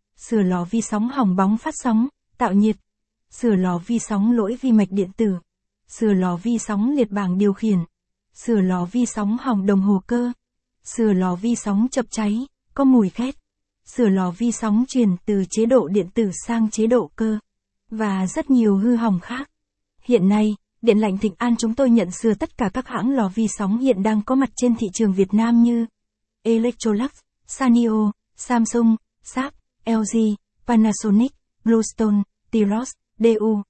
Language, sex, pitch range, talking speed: Vietnamese, female, 205-235 Hz, 180 wpm